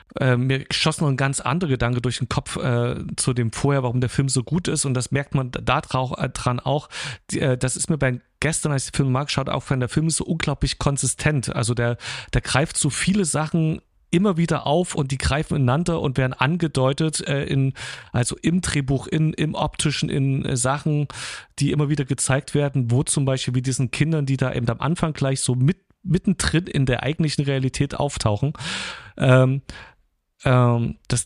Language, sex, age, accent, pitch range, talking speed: German, male, 40-59, German, 125-155 Hz, 200 wpm